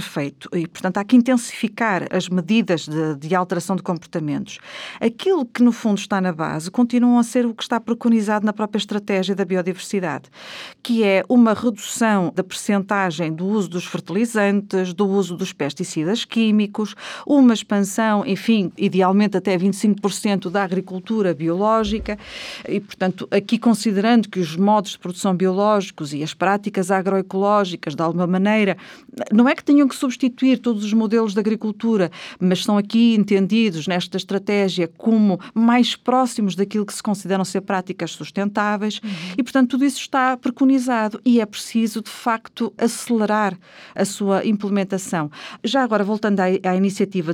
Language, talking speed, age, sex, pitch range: Portuguese, 150 wpm, 40-59, female, 190-235 Hz